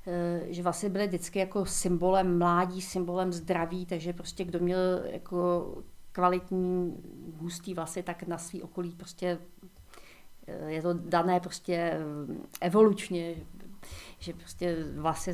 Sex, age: female, 40-59